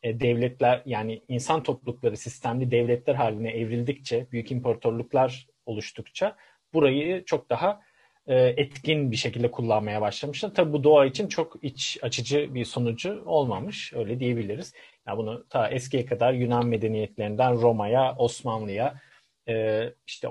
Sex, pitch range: male, 120-145 Hz